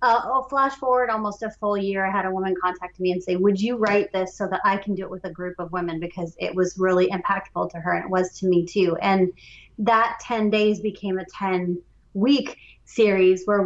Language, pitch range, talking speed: English, 185-225 Hz, 235 wpm